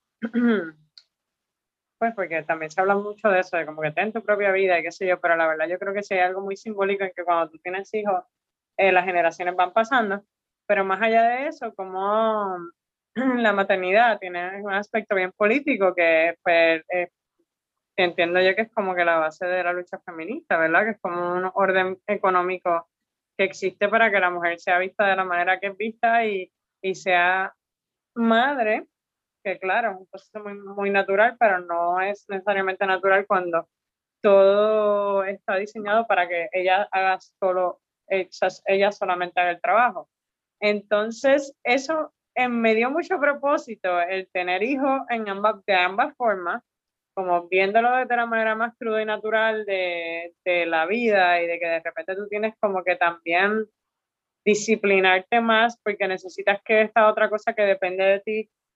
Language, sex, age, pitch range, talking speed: Spanish, female, 20-39, 180-220 Hz, 175 wpm